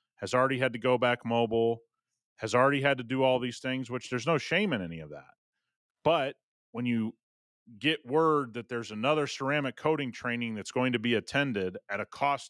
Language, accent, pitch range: English, American, 110-130 Hz